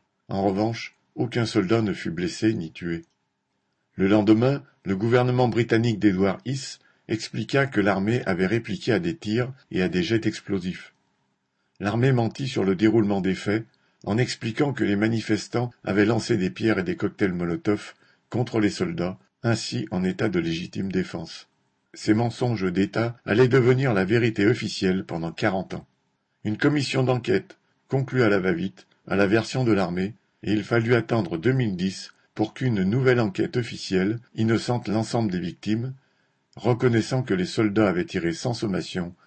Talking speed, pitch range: 155 wpm, 95-120 Hz